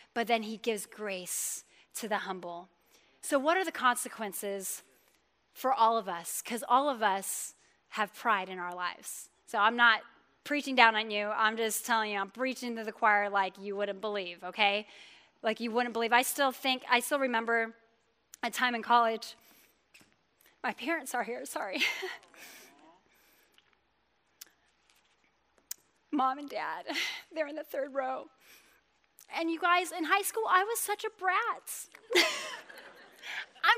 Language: English